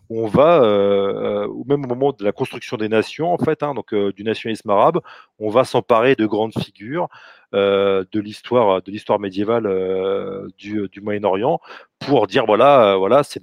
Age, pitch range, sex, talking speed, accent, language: 30-49, 100-125 Hz, male, 185 wpm, French, French